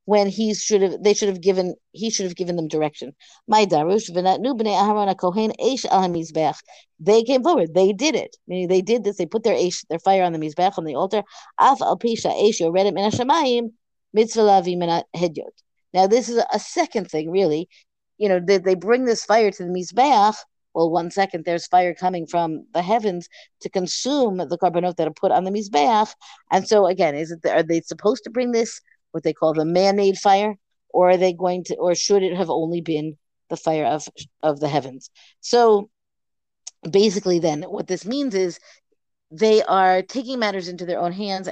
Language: English